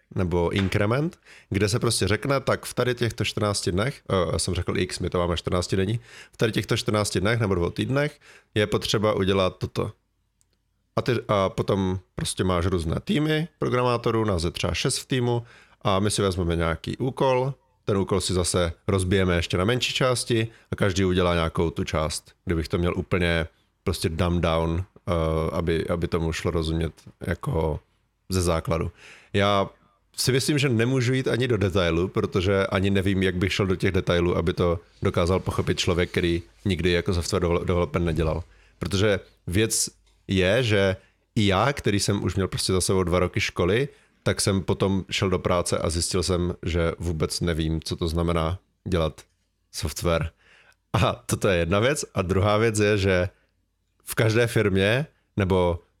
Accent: native